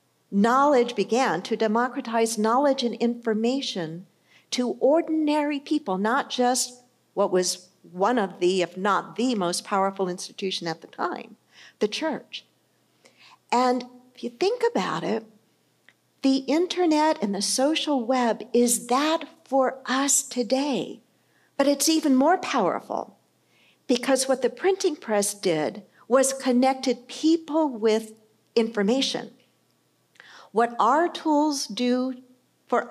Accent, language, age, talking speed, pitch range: American, English, 50-69, 120 wpm, 220-285 Hz